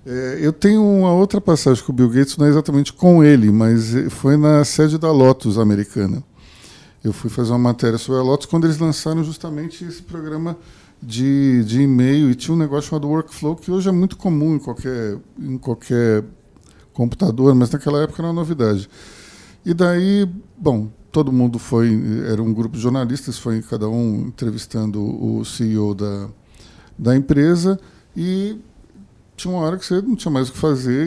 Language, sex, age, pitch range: Portuguese, male, 50-69, 115-160 Hz